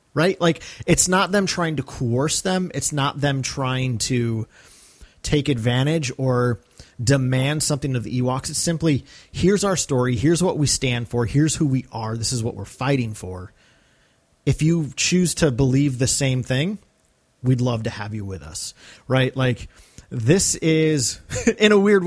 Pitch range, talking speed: 115-145 Hz, 175 wpm